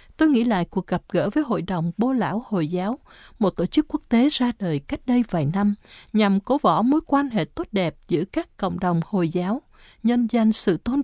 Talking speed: 230 wpm